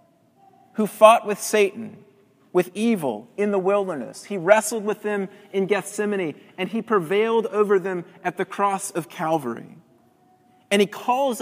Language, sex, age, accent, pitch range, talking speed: English, male, 30-49, American, 175-210 Hz, 145 wpm